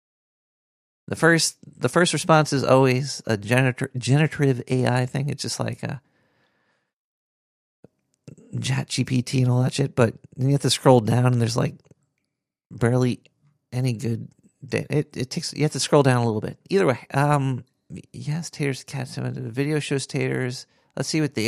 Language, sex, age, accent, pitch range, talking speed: English, male, 40-59, American, 120-145 Hz, 180 wpm